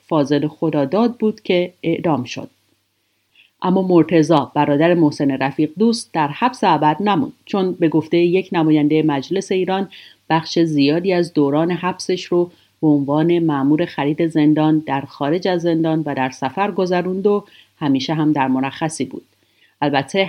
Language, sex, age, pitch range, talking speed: Persian, female, 40-59, 145-180 Hz, 145 wpm